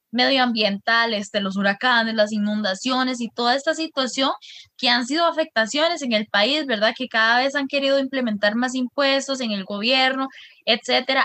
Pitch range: 225-290 Hz